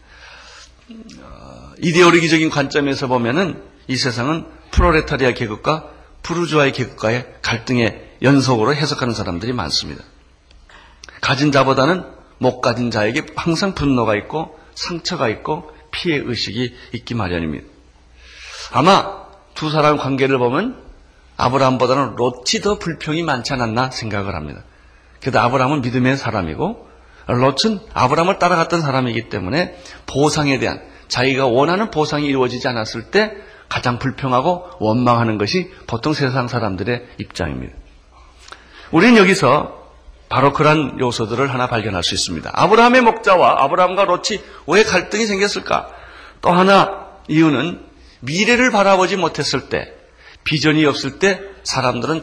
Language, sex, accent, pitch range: Korean, male, native, 115-155 Hz